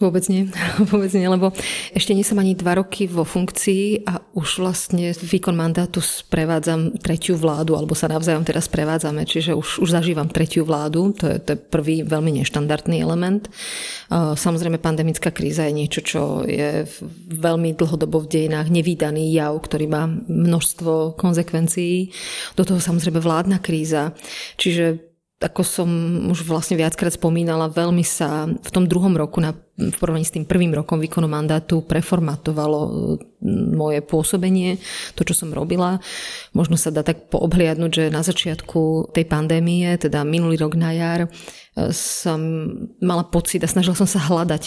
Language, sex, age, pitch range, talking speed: Slovak, female, 30-49, 160-180 Hz, 150 wpm